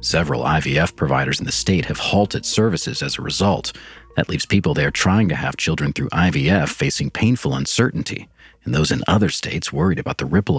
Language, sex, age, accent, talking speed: English, male, 40-59, American, 195 wpm